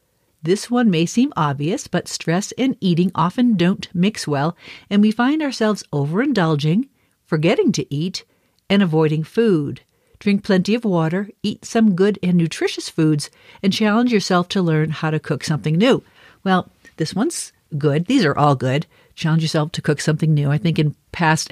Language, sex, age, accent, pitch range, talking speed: English, female, 50-69, American, 150-200 Hz, 175 wpm